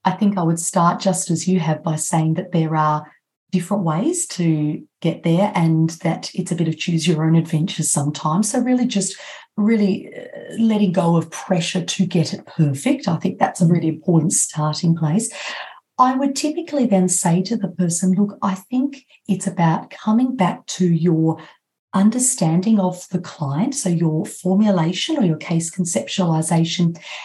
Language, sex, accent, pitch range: English, female, Australian, 165-205 Hz